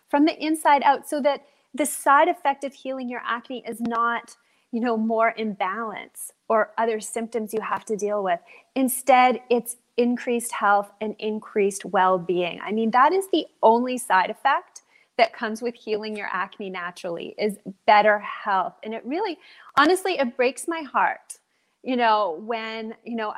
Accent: American